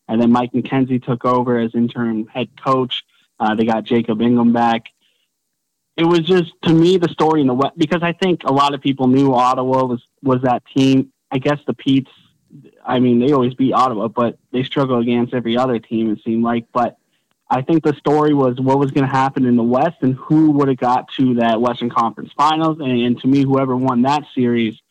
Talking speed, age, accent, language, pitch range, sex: 220 wpm, 20-39, American, English, 120-140 Hz, male